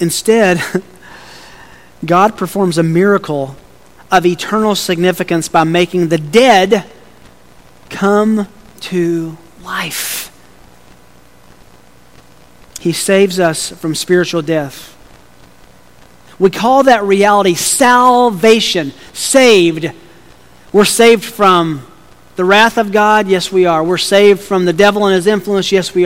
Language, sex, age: English, male, 40-59